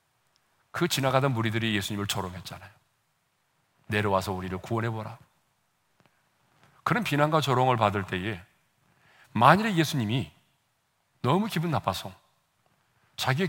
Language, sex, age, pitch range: Korean, male, 40-59, 105-140 Hz